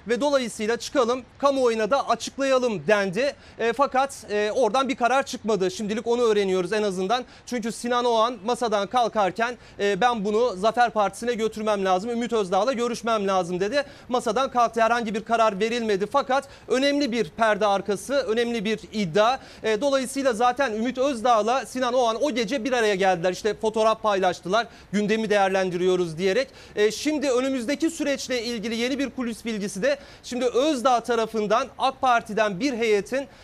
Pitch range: 215-255 Hz